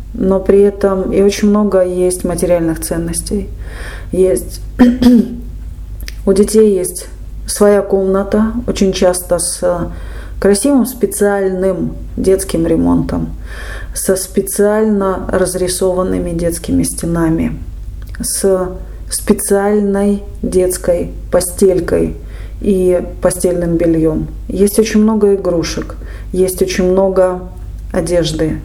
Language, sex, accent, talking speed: Russian, female, native, 90 wpm